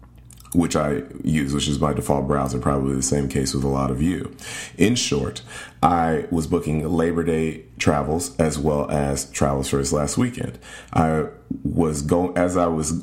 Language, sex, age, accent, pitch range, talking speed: English, male, 30-49, American, 70-90 Hz, 180 wpm